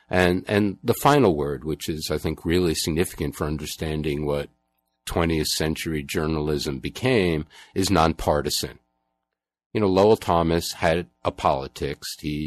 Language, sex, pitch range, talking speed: English, male, 75-90 Hz, 135 wpm